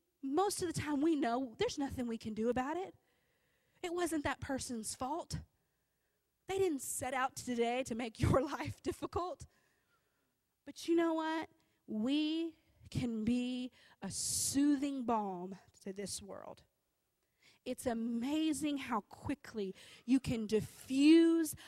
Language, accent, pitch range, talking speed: English, American, 220-285 Hz, 135 wpm